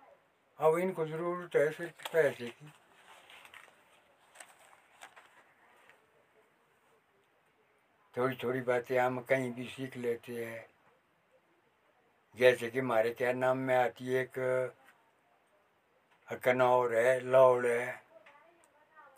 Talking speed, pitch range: 95 wpm, 120-175 Hz